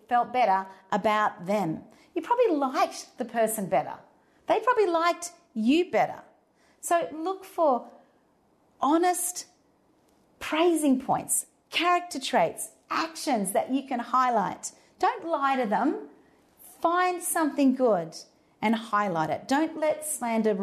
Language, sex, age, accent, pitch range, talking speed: English, female, 40-59, Australian, 185-265 Hz, 120 wpm